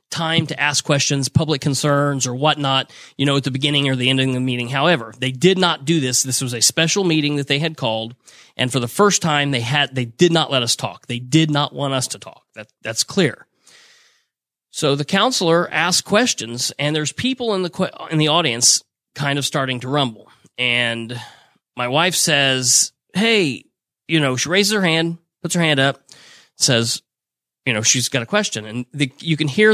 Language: English